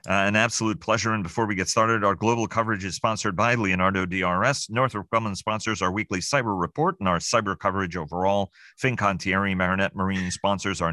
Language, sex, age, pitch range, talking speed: English, male, 40-59, 90-105 Hz, 185 wpm